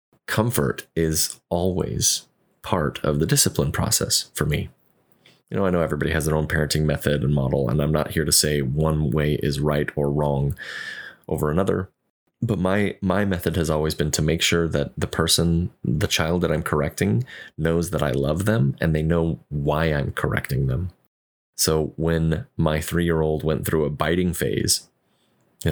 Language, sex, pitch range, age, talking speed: English, male, 75-90 Hz, 30-49, 175 wpm